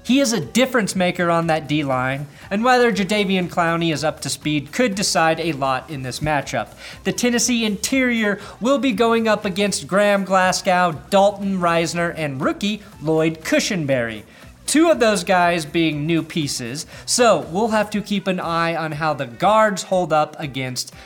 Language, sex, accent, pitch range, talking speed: English, male, American, 150-205 Hz, 170 wpm